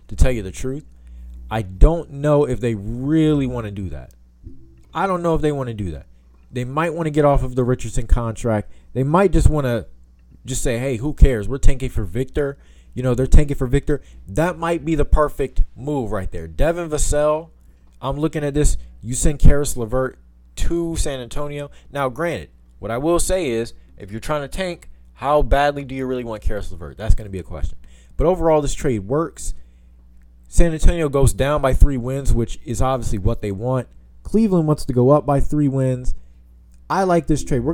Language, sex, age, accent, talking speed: English, male, 20-39, American, 210 wpm